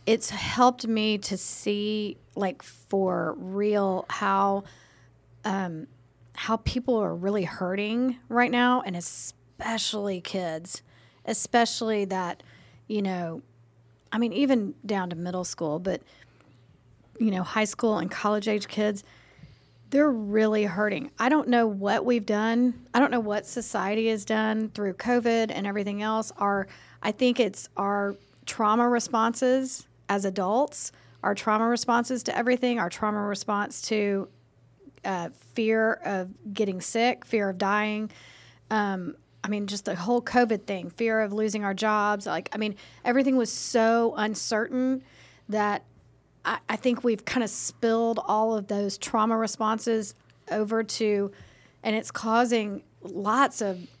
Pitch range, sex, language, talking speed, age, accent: 190-230 Hz, female, English, 140 wpm, 40-59, American